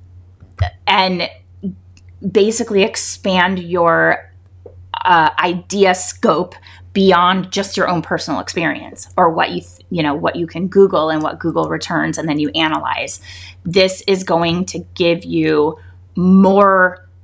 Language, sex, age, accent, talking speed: English, female, 20-39, American, 130 wpm